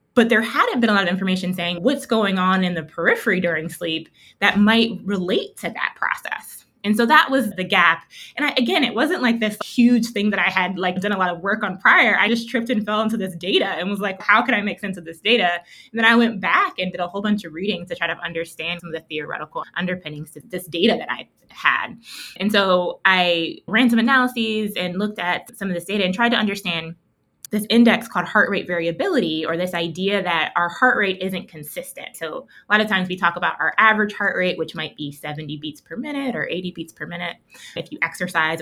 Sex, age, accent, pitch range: female, 20-39, American, 170-220 Hz